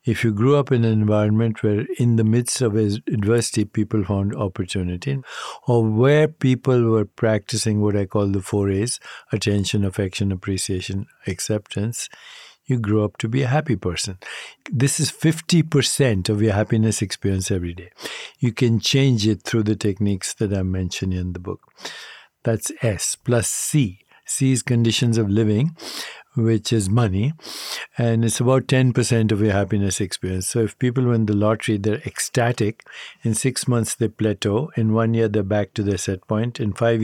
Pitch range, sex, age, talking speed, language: 100-120 Hz, male, 60-79, 170 wpm, English